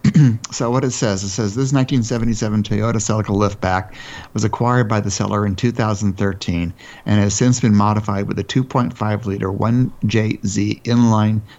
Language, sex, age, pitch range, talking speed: English, male, 60-79, 100-120 Hz, 150 wpm